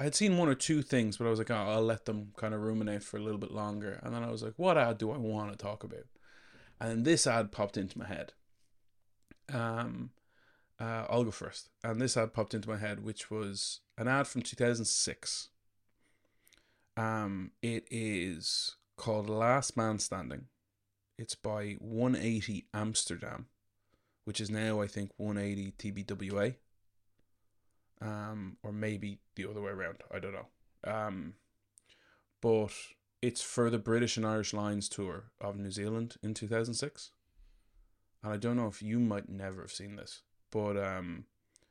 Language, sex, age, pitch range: English, male, 20-39, 100-115 Hz